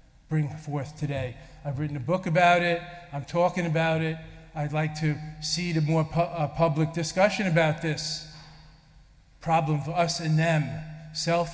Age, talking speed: 40-59, 155 wpm